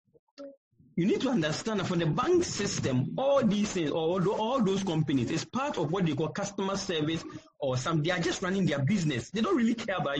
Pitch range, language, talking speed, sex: 160-220 Hz, English, 225 wpm, male